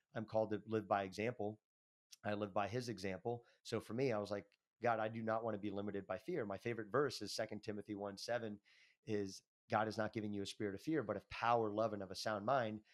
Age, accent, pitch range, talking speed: 30-49, American, 100-115 Hz, 250 wpm